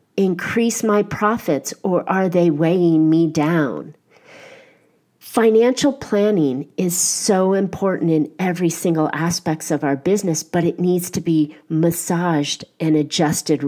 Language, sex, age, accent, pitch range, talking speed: English, female, 40-59, American, 160-215 Hz, 125 wpm